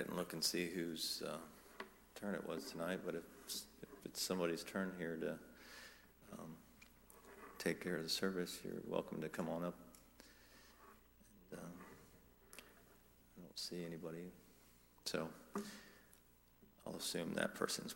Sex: male